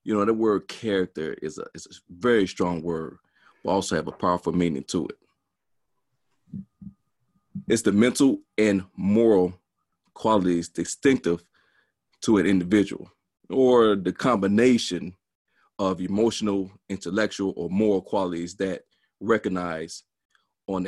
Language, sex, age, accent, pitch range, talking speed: English, male, 30-49, American, 95-120 Hz, 120 wpm